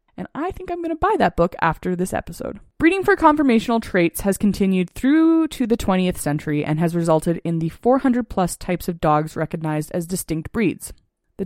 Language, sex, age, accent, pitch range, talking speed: English, female, 20-39, American, 160-215 Hz, 200 wpm